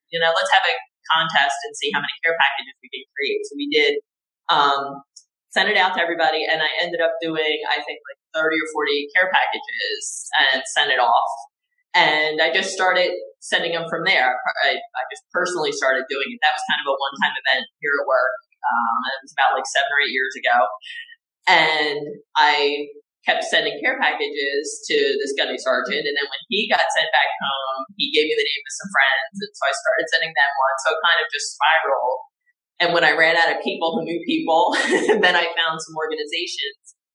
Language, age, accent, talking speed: English, 20-39, American, 210 wpm